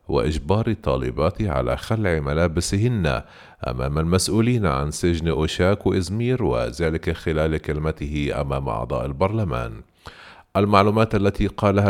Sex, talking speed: male, 100 wpm